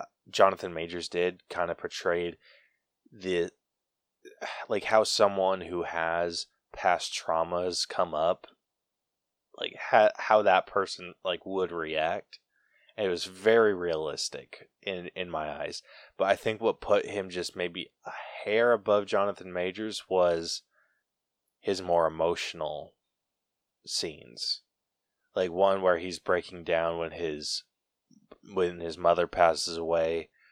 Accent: American